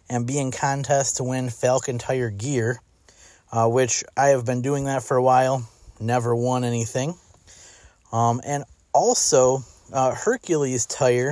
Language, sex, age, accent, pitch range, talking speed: English, male, 30-49, American, 115-140 Hz, 150 wpm